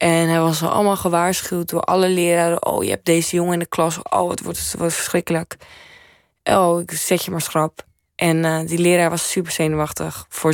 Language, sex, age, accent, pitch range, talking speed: Dutch, female, 20-39, Dutch, 160-185 Hz, 200 wpm